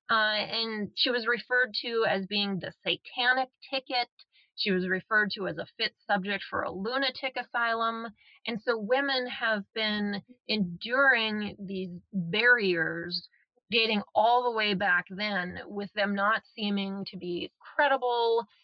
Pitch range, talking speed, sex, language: 190-225 Hz, 140 wpm, female, English